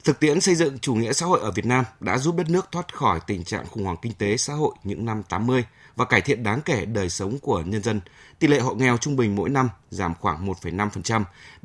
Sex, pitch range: male, 100-135 Hz